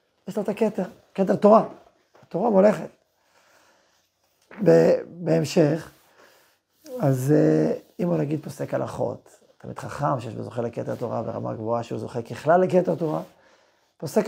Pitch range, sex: 155-210 Hz, male